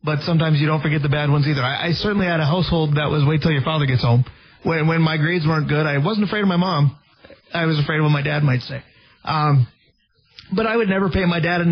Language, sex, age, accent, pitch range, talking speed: English, male, 30-49, American, 145-175 Hz, 270 wpm